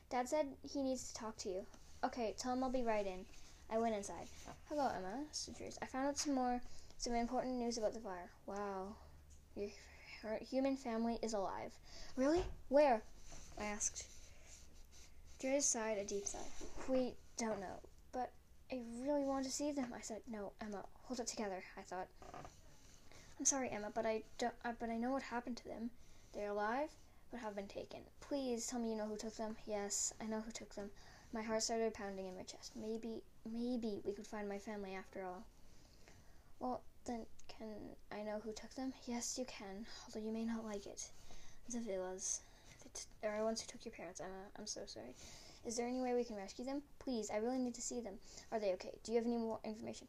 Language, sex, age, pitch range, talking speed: English, female, 10-29, 205-245 Hz, 205 wpm